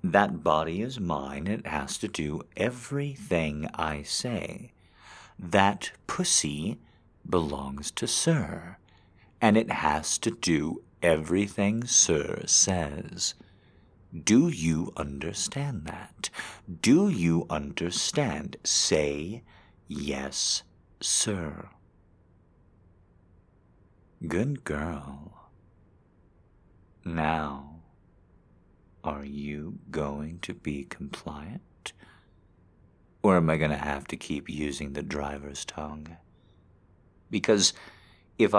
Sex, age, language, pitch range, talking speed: male, 50-69, English, 75-100 Hz, 90 wpm